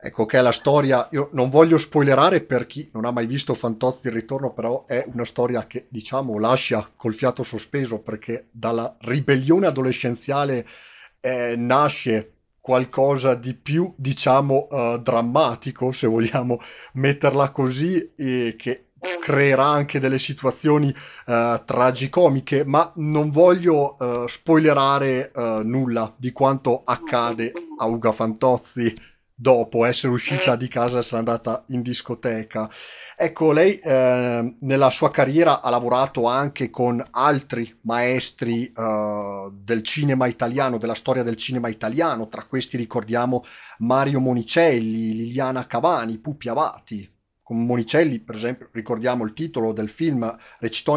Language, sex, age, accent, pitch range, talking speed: Italian, male, 40-59, native, 115-140 Hz, 135 wpm